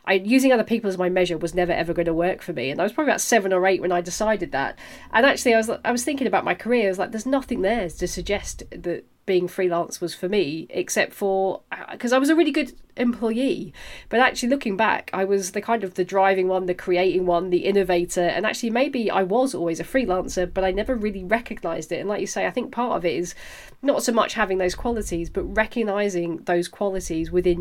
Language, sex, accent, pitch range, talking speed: English, female, British, 180-225 Hz, 245 wpm